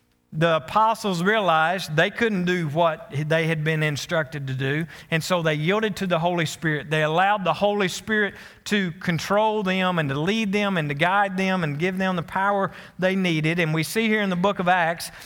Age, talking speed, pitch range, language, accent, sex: 40-59, 210 wpm, 160-210 Hz, English, American, male